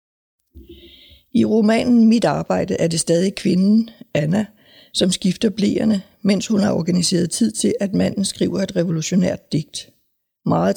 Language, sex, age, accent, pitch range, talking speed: Danish, female, 60-79, native, 170-205 Hz, 140 wpm